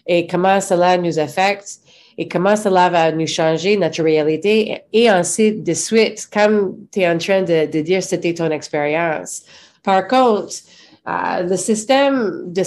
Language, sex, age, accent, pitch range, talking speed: English, female, 30-49, Canadian, 170-205 Hz, 160 wpm